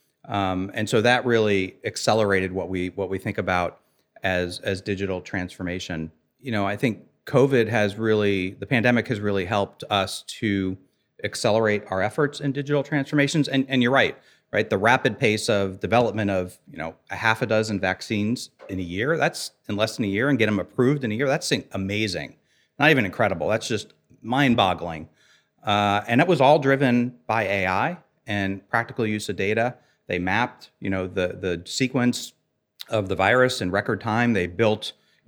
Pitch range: 95-120 Hz